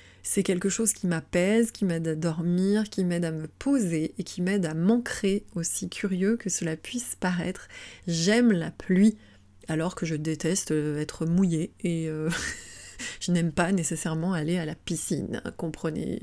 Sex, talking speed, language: female, 170 wpm, French